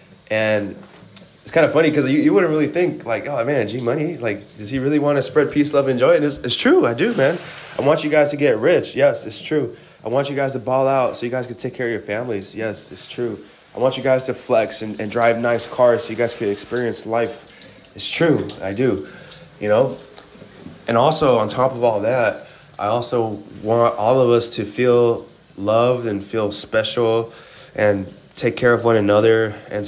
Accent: American